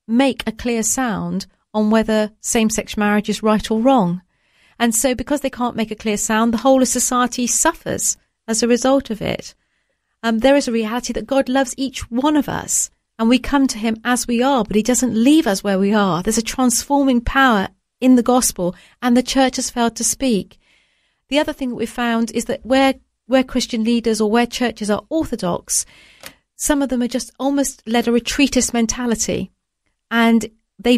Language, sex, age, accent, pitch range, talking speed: English, female, 40-59, British, 225-260 Hz, 200 wpm